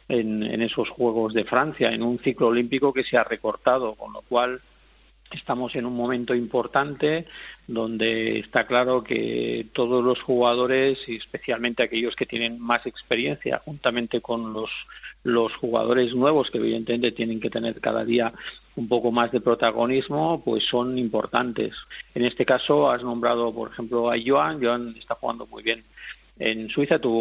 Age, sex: 50-69, male